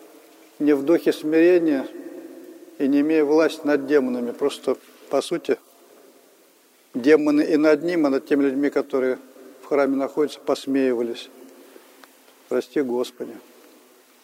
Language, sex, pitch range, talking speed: Russian, male, 140-160 Hz, 120 wpm